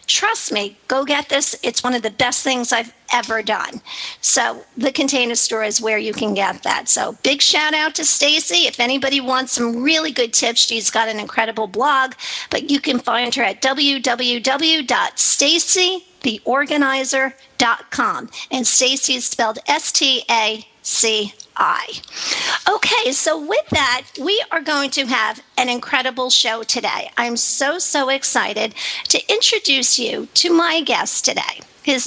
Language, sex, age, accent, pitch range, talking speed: English, female, 50-69, American, 245-310 Hz, 155 wpm